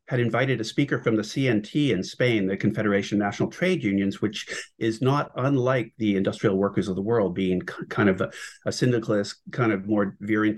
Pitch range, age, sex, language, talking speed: 105-125 Hz, 50-69, male, English, 195 wpm